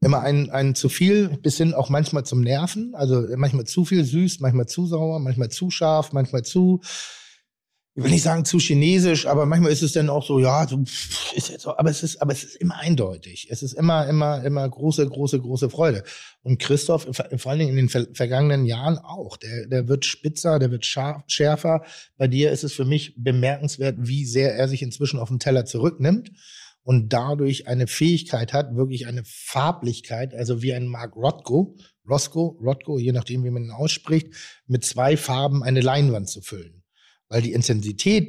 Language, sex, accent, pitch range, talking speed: German, male, German, 125-155 Hz, 195 wpm